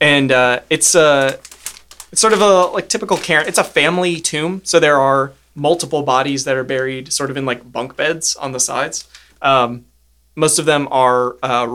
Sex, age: male, 20-39